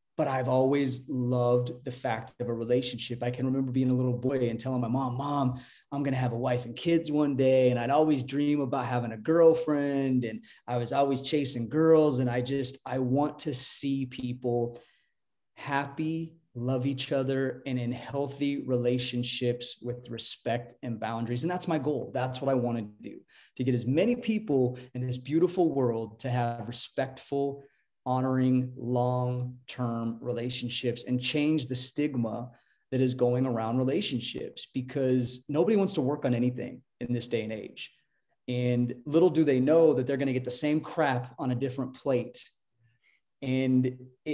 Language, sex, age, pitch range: English, male, 20-39, 125-140 Hz